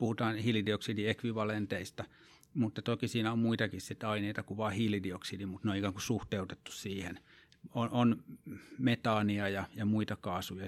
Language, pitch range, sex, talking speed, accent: Finnish, 105-130 Hz, male, 140 wpm, native